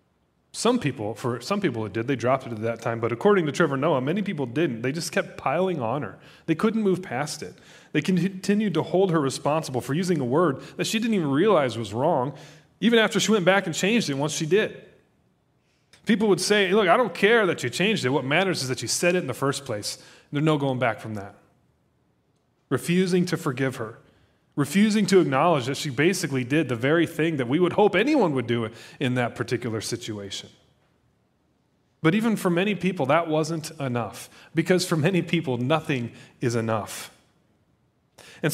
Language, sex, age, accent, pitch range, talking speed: English, male, 30-49, American, 135-185 Hz, 200 wpm